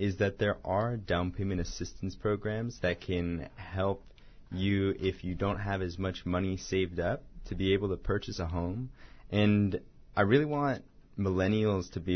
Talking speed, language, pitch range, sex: 175 wpm, English, 90-105 Hz, male